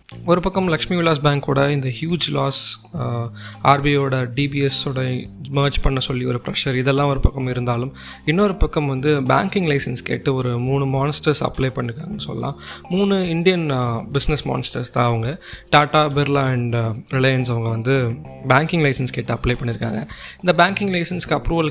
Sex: male